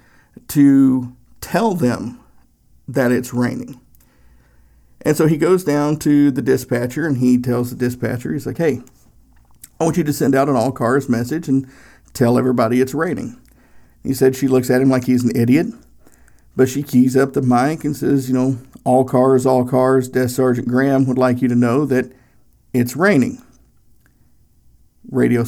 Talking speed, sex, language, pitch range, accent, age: 165 wpm, male, English, 125-140 Hz, American, 50-69